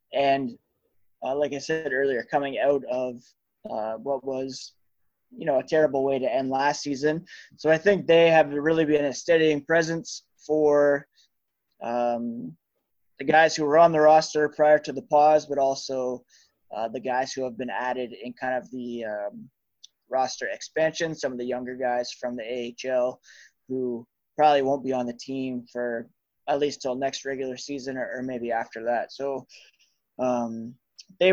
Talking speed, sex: 170 wpm, male